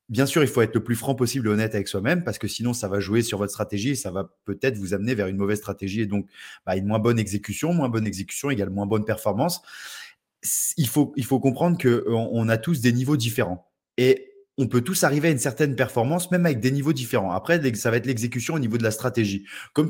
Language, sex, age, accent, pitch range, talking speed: French, male, 20-39, French, 115-155 Hz, 250 wpm